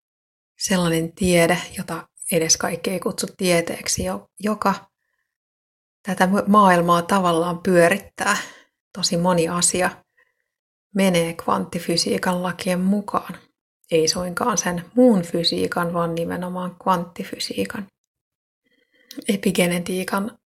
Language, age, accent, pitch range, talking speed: Finnish, 30-49, native, 175-195 Hz, 85 wpm